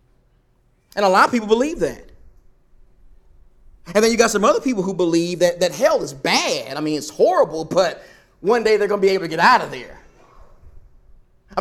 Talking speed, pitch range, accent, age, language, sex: 200 wpm, 190-280 Hz, American, 30-49, English, male